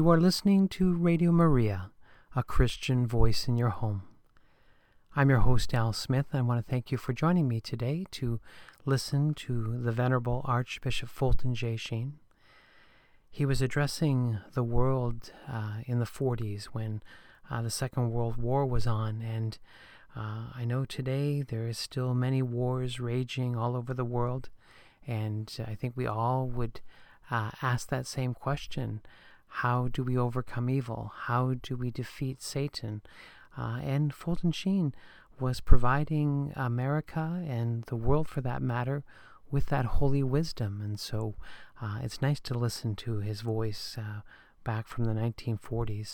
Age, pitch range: 40-59, 115-135 Hz